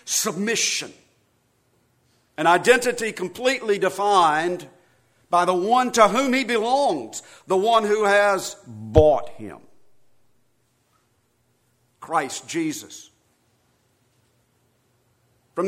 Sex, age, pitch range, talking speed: male, 50-69, 140-225 Hz, 80 wpm